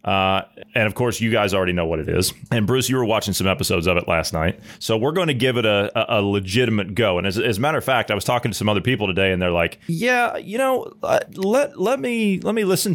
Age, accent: 30-49, American